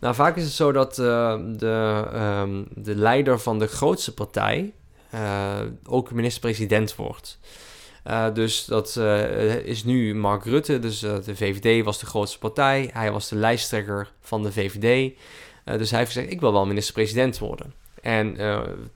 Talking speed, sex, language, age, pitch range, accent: 170 wpm, male, Dutch, 20-39, 105-125 Hz, Dutch